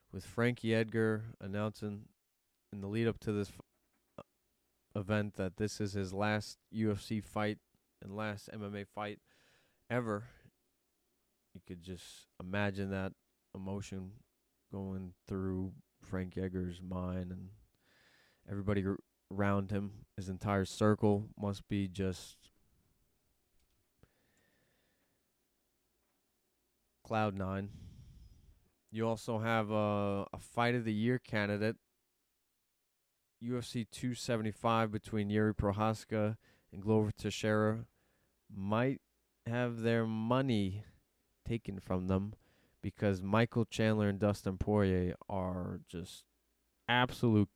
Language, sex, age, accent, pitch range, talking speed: English, male, 20-39, American, 95-110 Hz, 105 wpm